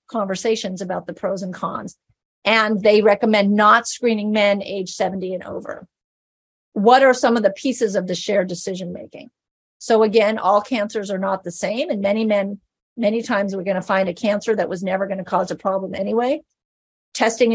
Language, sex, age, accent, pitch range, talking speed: English, female, 40-59, American, 190-230 Hz, 190 wpm